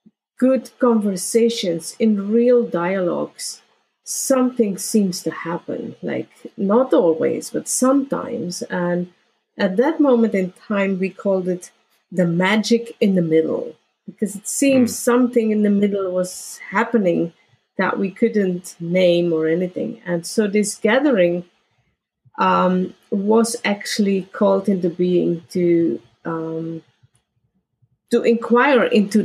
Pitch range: 175-225 Hz